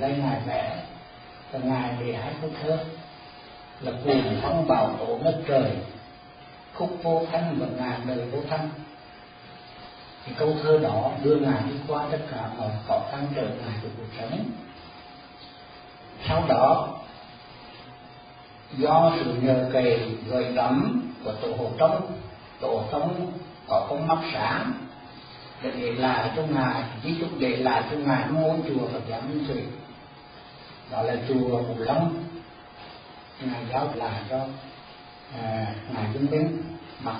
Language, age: Vietnamese, 40-59